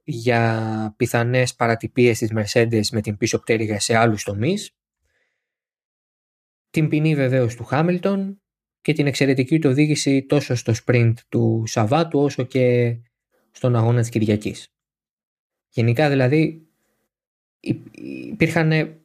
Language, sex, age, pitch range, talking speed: Greek, male, 20-39, 110-135 Hz, 115 wpm